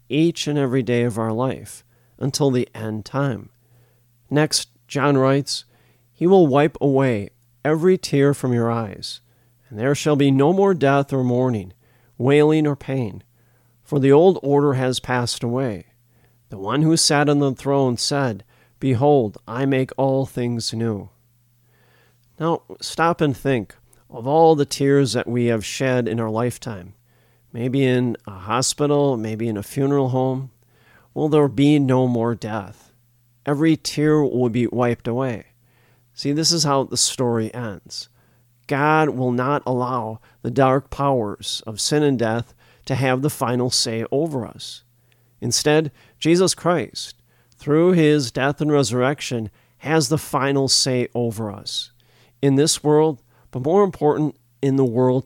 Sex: male